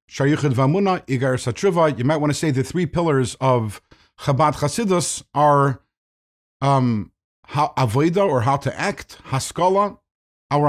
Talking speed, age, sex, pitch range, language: 105 wpm, 50-69, male, 120-160 Hz, English